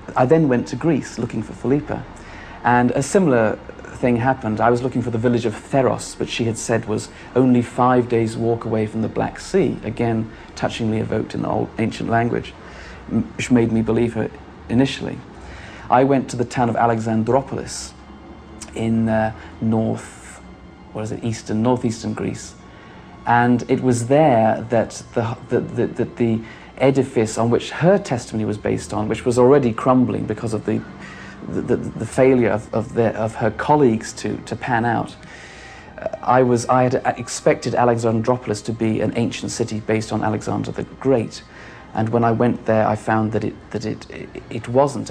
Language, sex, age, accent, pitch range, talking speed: English, male, 40-59, British, 110-125 Hz, 180 wpm